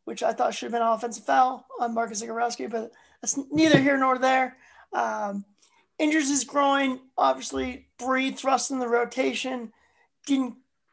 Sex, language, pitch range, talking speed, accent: male, English, 230-270 Hz, 160 wpm, American